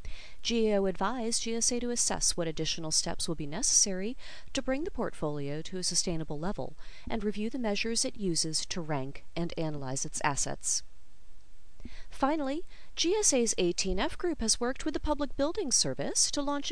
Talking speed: 160 wpm